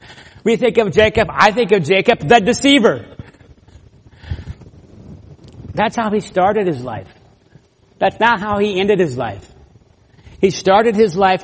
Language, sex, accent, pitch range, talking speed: English, male, American, 160-235 Hz, 140 wpm